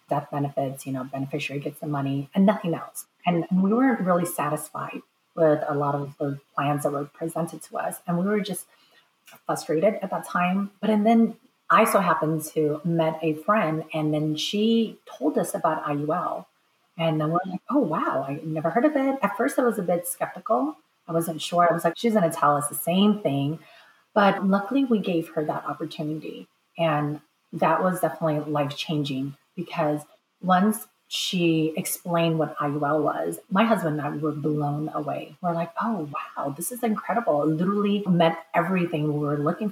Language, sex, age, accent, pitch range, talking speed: English, female, 30-49, American, 150-190 Hz, 185 wpm